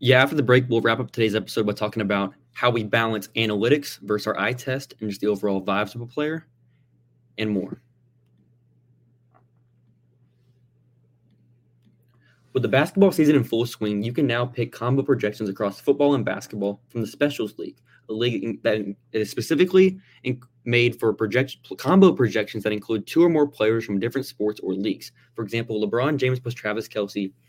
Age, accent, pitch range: 20-39, American, 110-135 Hz